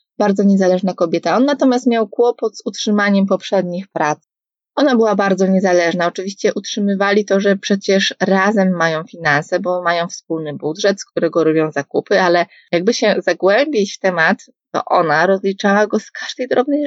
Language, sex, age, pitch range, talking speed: Polish, female, 20-39, 185-225 Hz, 155 wpm